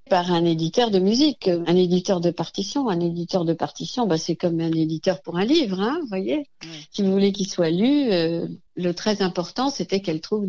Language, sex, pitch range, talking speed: French, female, 175-210 Hz, 215 wpm